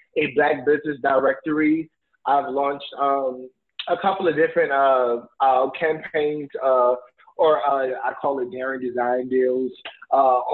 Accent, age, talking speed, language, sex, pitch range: American, 20-39, 135 wpm, English, male, 125-185 Hz